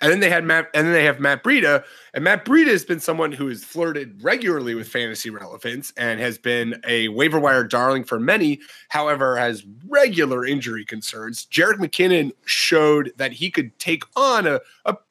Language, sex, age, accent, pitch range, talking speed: English, male, 30-49, American, 125-170 Hz, 190 wpm